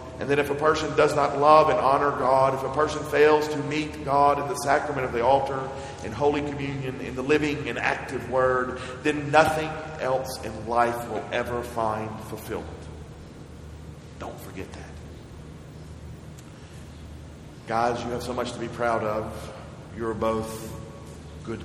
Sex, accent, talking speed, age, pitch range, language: male, American, 160 wpm, 40-59, 100-135 Hz, English